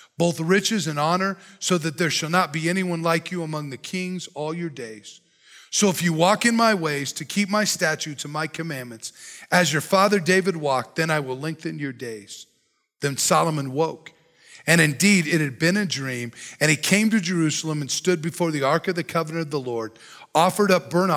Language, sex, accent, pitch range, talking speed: English, male, American, 160-220 Hz, 205 wpm